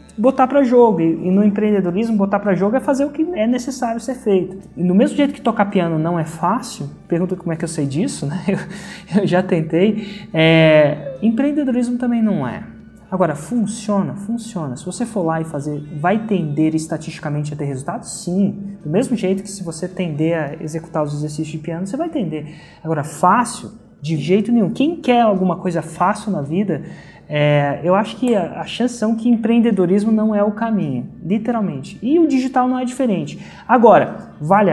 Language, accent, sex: Portuguese, Brazilian, male